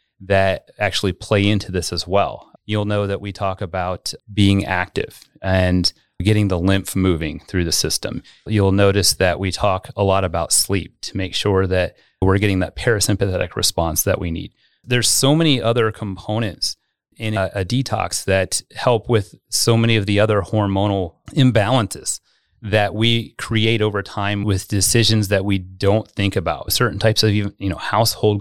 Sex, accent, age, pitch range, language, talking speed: male, American, 30-49, 95-115 Hz, English, 170 wpm